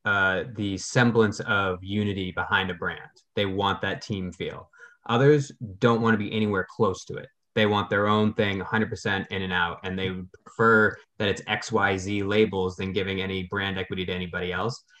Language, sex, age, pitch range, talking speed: English, male, 20-39, 95-115 Hz, 190 wpm